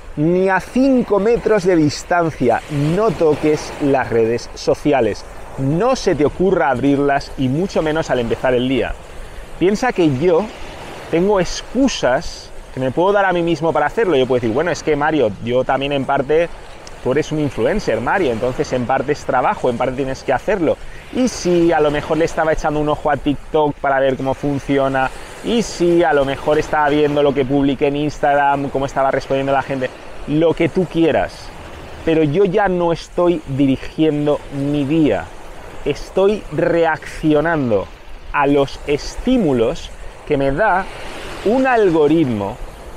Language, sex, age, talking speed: English, male, 30-49, 165 wpm